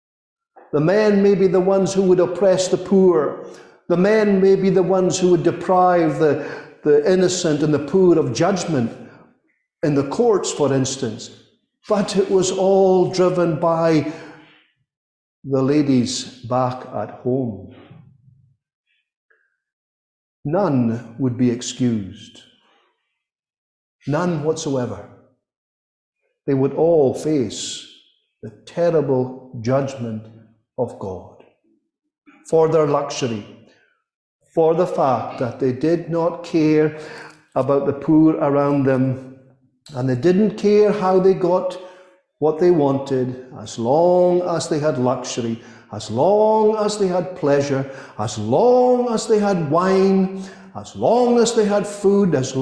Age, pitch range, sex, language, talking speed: 50-69, 130-190 Hz, male, English, 125 wpm